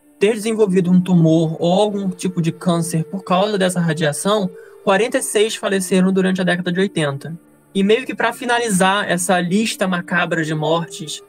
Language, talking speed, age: Portuguese, 160 wpm, 20-39